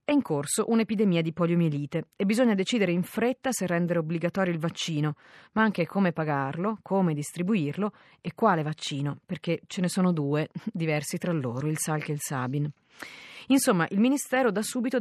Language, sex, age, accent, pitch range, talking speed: Italian, female, 30-49, native, 155-210 Hz, 170 wpm